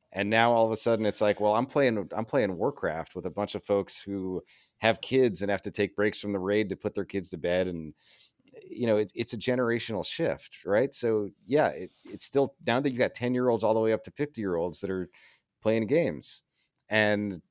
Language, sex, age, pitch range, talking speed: English, male, 40-59, 90-105 Hz, 235 wpm